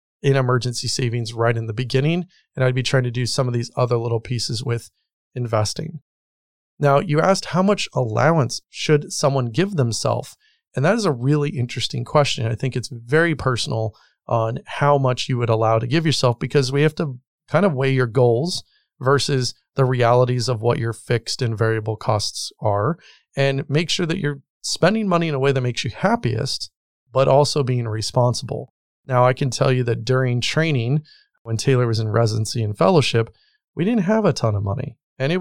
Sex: male